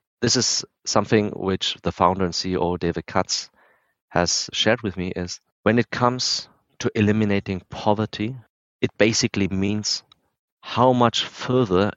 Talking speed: 135 wpm